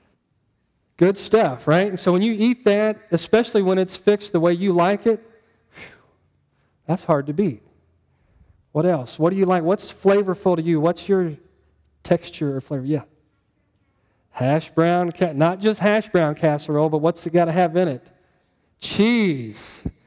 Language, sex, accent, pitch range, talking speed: English, male, American, 145-180 Hz, 165 wpm